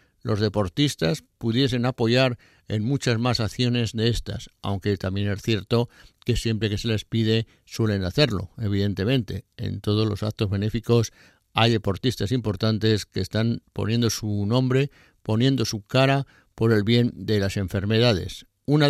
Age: 60-79